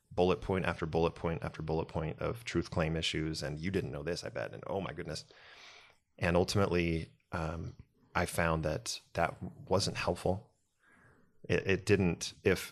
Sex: male